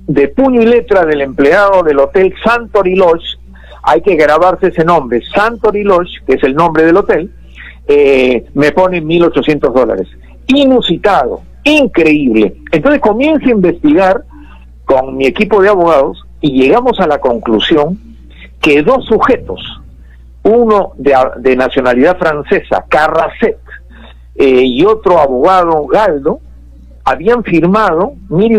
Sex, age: male, 50-69